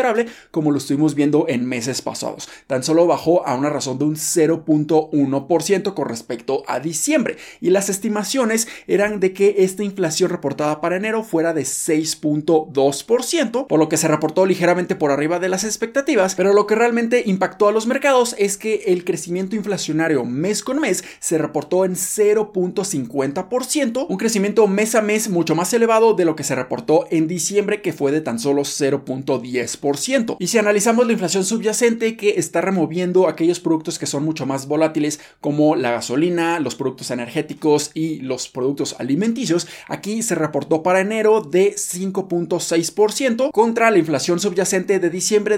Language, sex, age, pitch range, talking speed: Spanish, male, 20-39, 150-210 Hz, 165 wpm